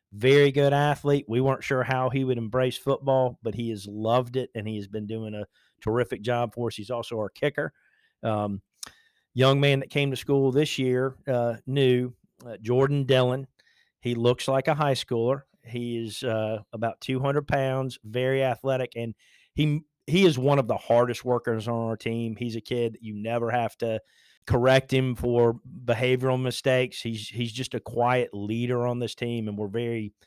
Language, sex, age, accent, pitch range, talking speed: English, male, 40-59, American, 115-130 Hz, 185 wpm